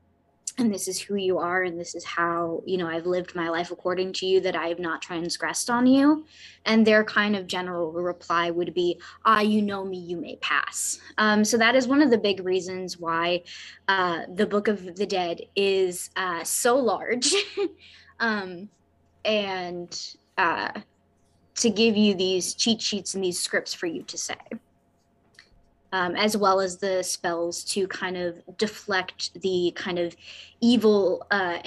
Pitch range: 175-210 Hz